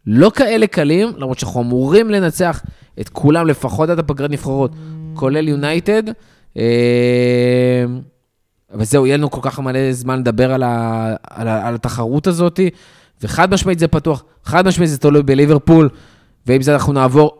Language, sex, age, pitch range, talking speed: Hebrew, male, 20-39, 120-160 Hz, 155 wpm